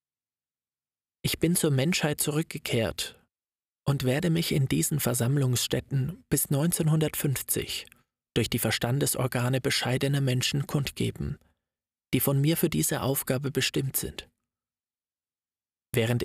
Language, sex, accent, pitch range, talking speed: German, male, German, 120-145 Hz, 105 wpm